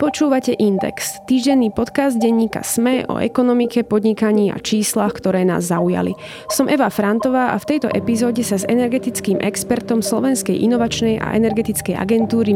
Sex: female